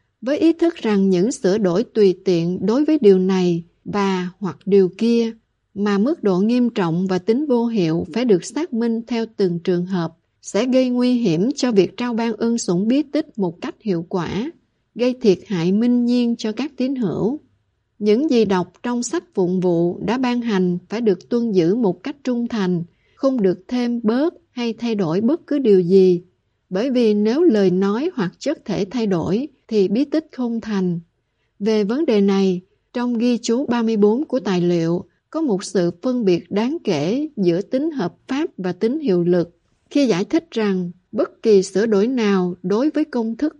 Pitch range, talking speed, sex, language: 185-245 Hz, 195 wpm, female, Vietnamese